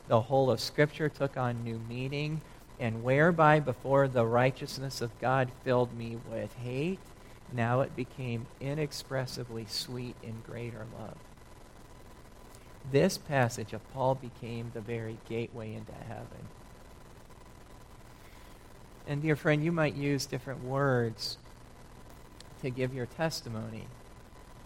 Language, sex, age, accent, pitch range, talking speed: English, male, 40-59, American, 115-140 Hz, 120 wpm